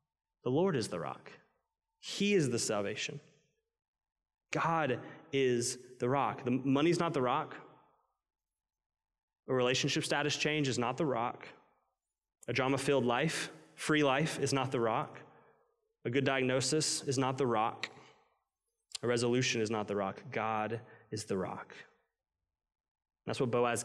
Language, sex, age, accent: English, male, 20-39, American